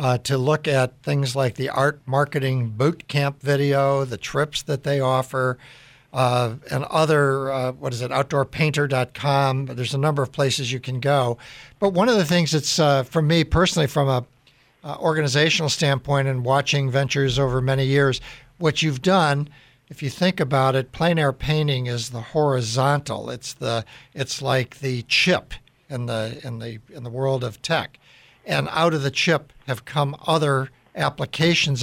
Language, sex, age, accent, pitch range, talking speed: English, male, 60-79, American, 130-150 Hz, 175 wpm